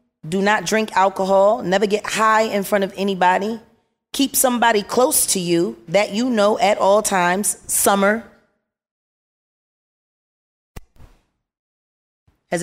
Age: 30-49